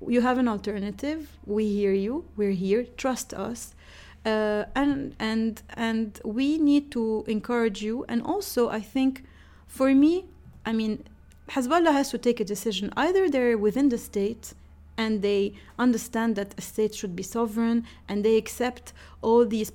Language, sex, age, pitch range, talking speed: English, female, 30-49, 205-240 Hz, 160 wpm